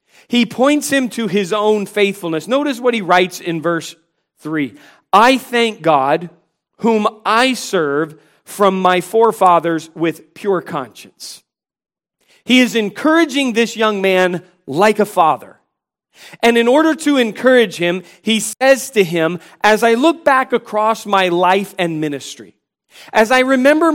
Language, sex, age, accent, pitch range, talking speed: English, male, 40-59, American, 170-220 Hz, 145 wpm